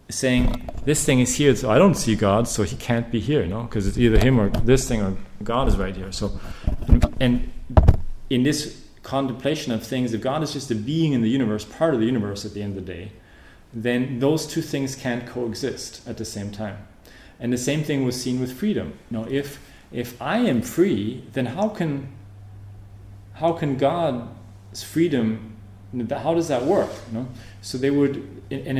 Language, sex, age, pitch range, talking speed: English, male, 30-49, 100-125 Hz, 200 wpm